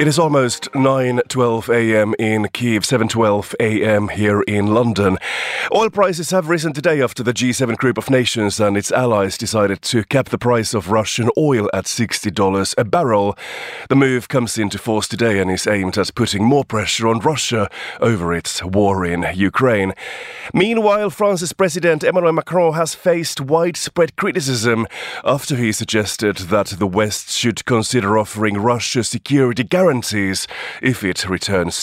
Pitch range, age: 100-130 Hz, 30-49